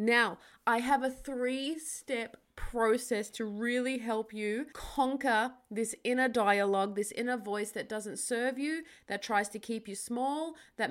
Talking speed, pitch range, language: 155 wpm, 210-265 Hz, English